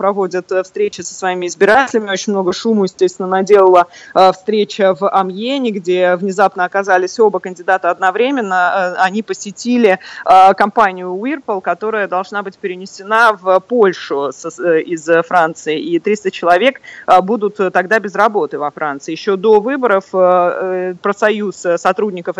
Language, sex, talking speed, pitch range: Russian, female, 125 wpm, 185-215 Hz